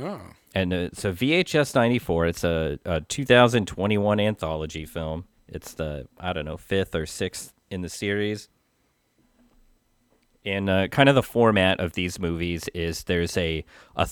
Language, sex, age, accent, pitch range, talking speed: English, male, 30-49, American, 85-110 Hz, 145 wpm